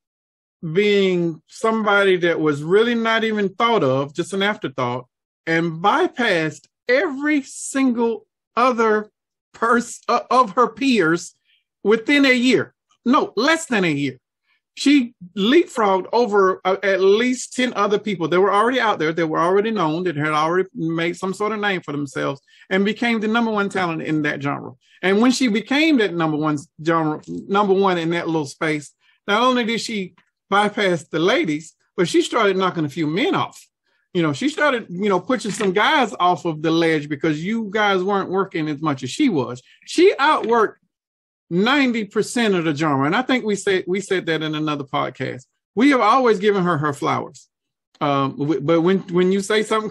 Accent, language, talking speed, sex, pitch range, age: American, English, 180 wpm, male, 165-225 Hz, 40-59